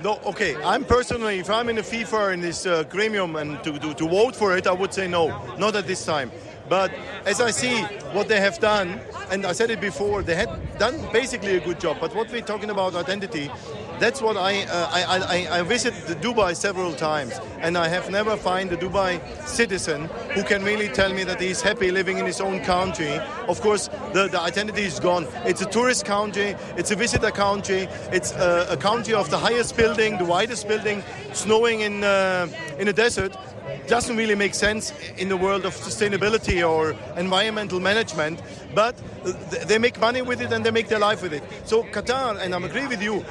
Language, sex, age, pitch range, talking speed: English, male, 50-69, 180-220 Hz, 210 wpm